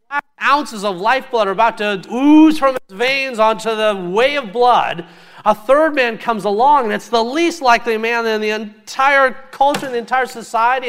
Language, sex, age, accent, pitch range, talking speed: English, male, 50-69, American, 165-240 Hz, 185 wpm